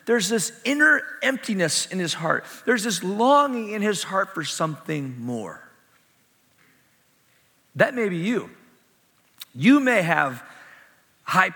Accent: American